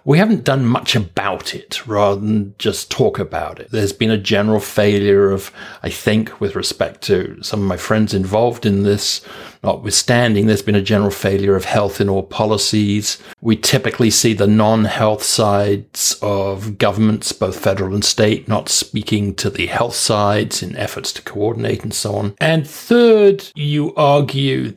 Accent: British